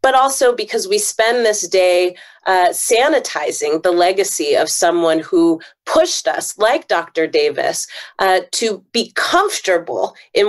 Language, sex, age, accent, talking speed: English, female, 30-49, American, 135 wpm